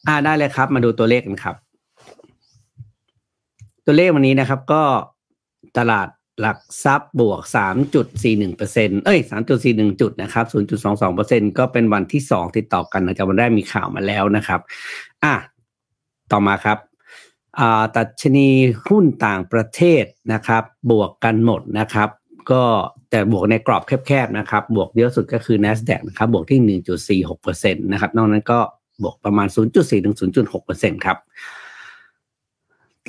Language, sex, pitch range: Thai, male, 105-130 Hz